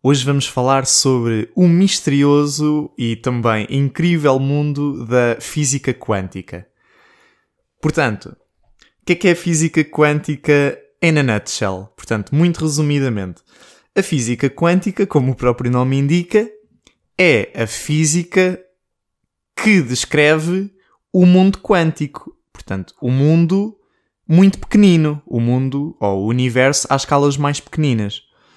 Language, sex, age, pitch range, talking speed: Portuguese, male, 20-39, 125-170 Hz, 120 wpm